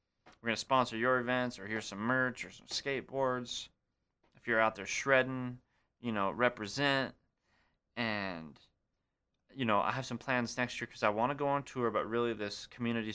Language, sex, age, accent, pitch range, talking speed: English, male, 20-39, American, 100-120 Hz, 185 wpm